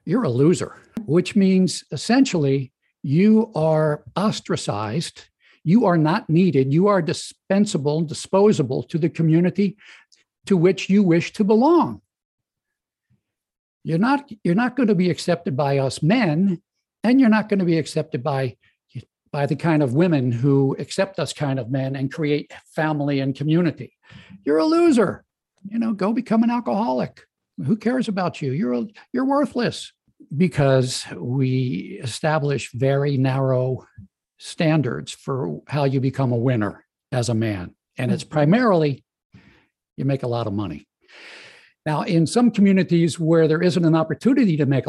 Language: English